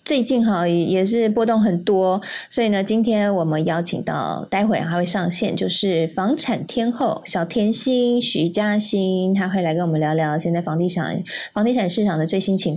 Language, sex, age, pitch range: Chinese, female, 20-39, 180-230 Hz